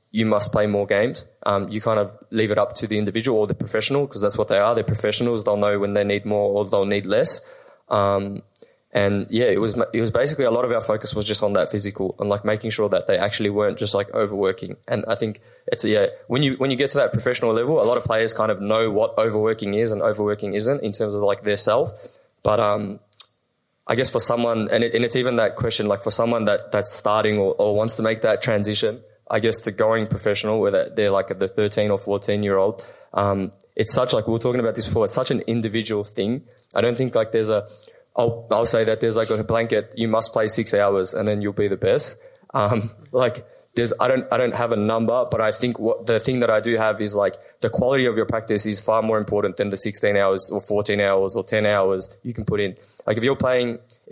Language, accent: English, Australian